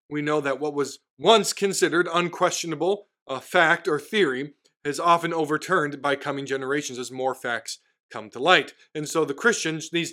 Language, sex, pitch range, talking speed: English, male, 130-180 Hz, 170 wpm